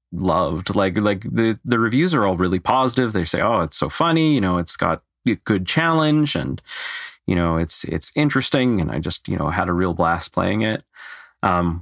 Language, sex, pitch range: English, male, 90-105 Hz